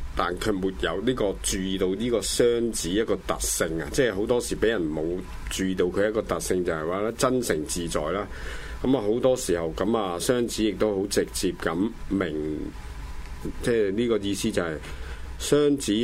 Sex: male